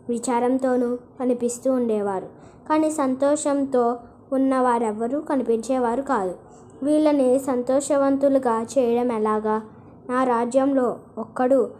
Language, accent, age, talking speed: Telugu, native, 20-39, 75 wpm